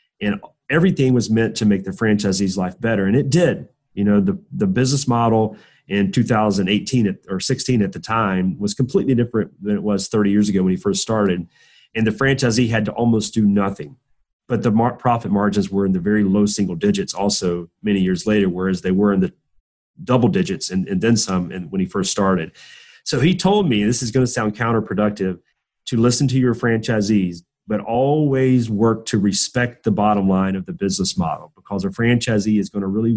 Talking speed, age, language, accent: 205 wpm, 30-49, English, American